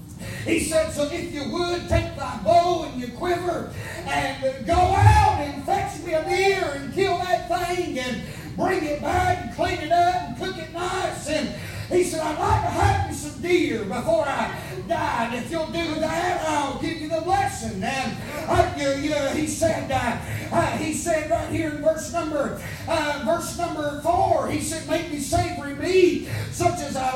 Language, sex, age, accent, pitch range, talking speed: English, male, 30-49, American, 300-345 Hz, 180 wpm